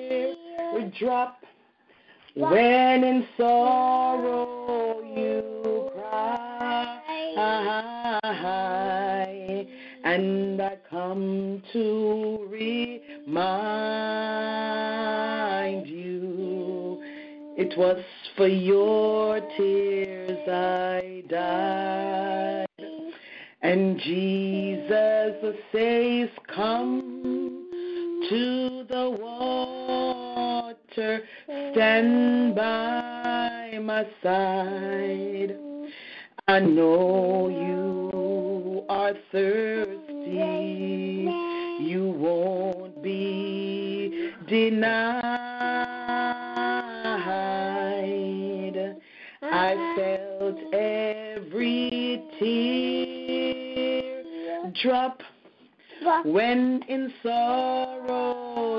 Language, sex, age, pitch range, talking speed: English, female, 40-59, 185-245 Hz, 45 wpm